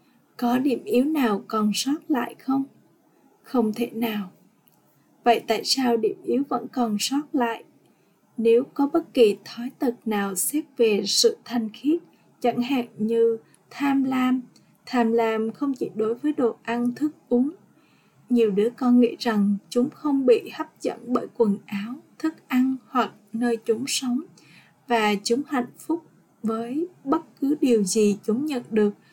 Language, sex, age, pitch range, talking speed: Vietnamese, female, 20-39, 225-270 Hz, 160 wpm